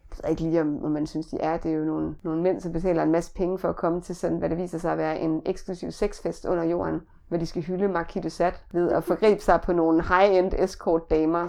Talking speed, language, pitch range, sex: 265 wpm, Danish, 160-185 Hz, female